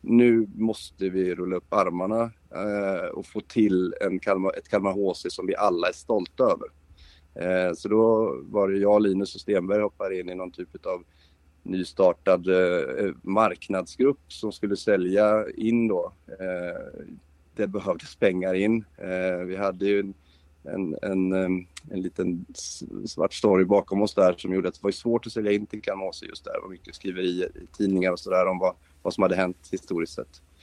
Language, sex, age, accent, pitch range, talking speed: Swedish, male, 30-49, native, 90-105 Hz, 185 wpm